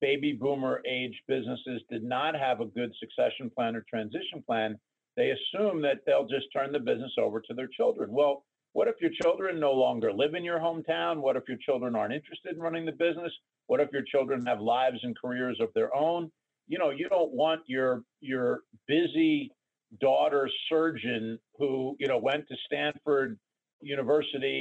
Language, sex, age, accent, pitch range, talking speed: English, male, 50-69, American, 125-160 Hz, 185 wpm